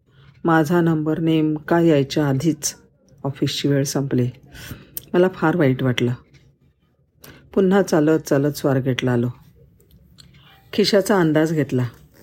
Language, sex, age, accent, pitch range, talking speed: Marathi, female, 50-69, native, 140-175 Hz, 100 wpm